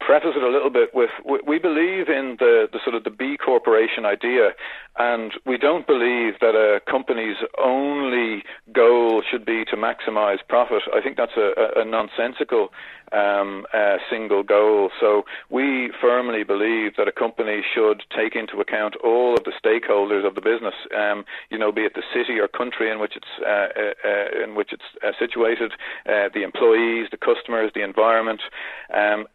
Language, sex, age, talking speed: English, male, 40-59, 180 wpm